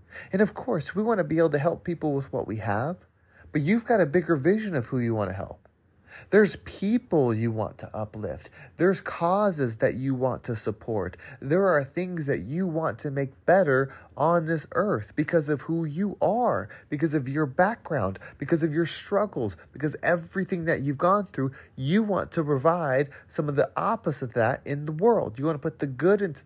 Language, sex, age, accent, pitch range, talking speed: English, male, 30-49, American, 110-170 Hz, 205 wpm